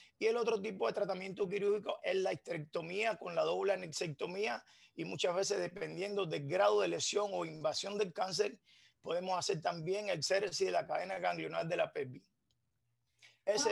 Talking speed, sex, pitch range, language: 170 wpm, male, 175-210 Hz, Spanish